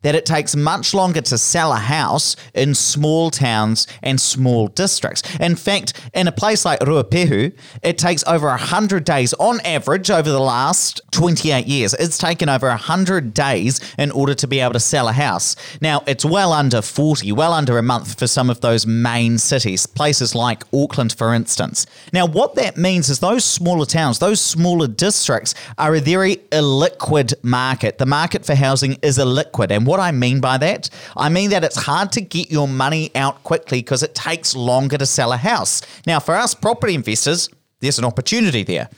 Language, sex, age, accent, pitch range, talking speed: English, male, 30-49, Australian, 130-165 Hz, 190 wpm